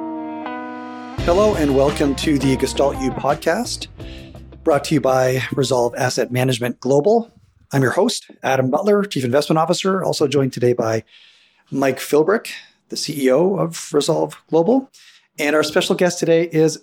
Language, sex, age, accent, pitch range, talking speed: English, male, 40-59, American, 125-150 Hz, 145 wpm